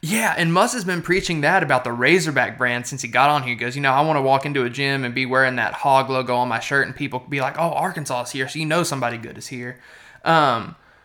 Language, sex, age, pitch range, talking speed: English, male, 20-39, 130-160 Hz, 280 wpm